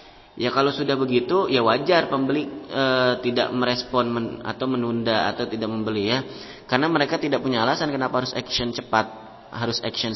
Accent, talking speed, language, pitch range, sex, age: native, 165 wpm, Indonesian, 115-150 Hz, male, 30-49